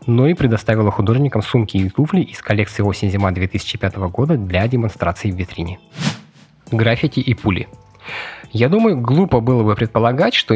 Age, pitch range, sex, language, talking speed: 20-39, 105-135 Hz, male, Russian, 150 wpm